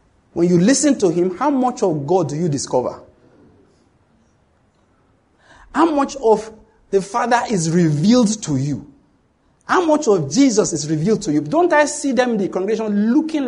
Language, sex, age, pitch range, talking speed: English, male, 50-69, 185-275 Hz, 165 wpm